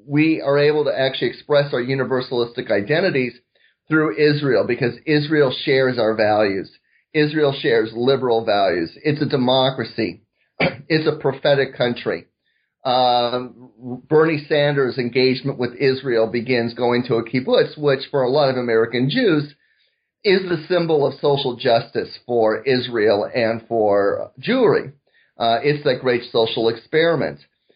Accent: American